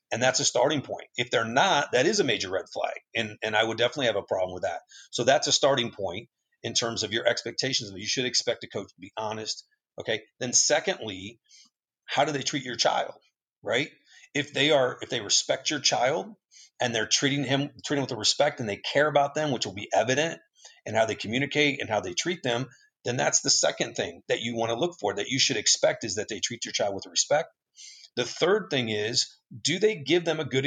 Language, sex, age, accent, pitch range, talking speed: English, male, 40-59, American, 115-140 Hz, 230 wpm